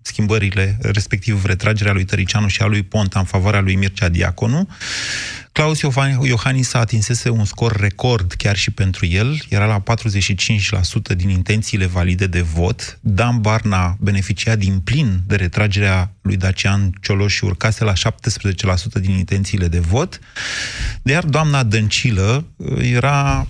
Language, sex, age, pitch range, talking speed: Romanian, male, 30-49, 100-120 Hz, 140 wpm